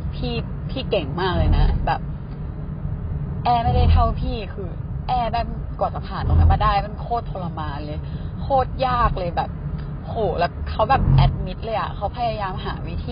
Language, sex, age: Thai, female, 20-39